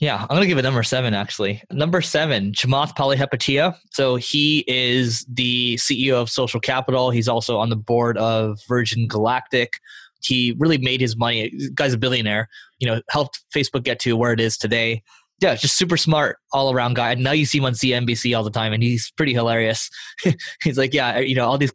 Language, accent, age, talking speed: English, American, 20-39, 205 wpm